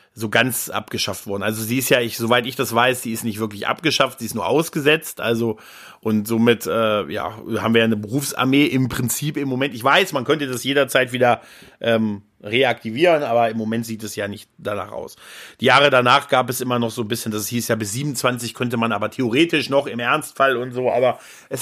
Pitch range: 115-145 Hz